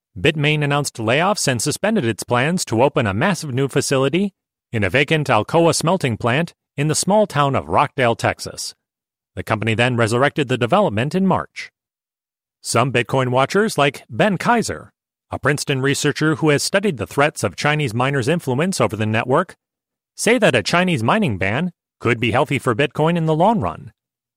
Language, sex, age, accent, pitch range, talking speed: English, male, 30-49, American, 120-165 Hz, 170 wpm